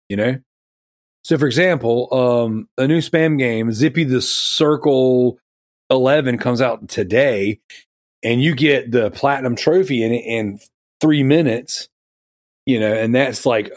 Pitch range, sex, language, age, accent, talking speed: 115-145 Hz, male, English, 30-49, American, 150 wpm